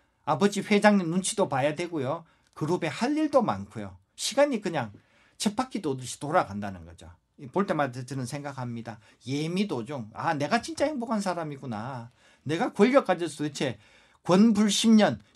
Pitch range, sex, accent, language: 120-200 Hz, male, native, Korean